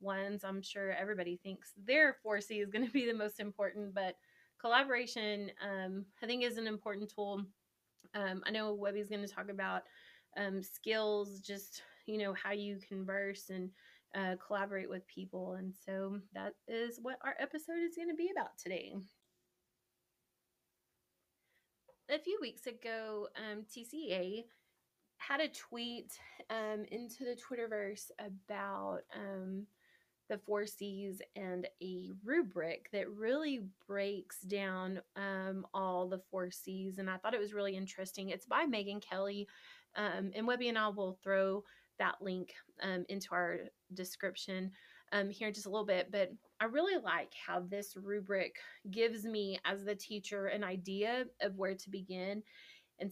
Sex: female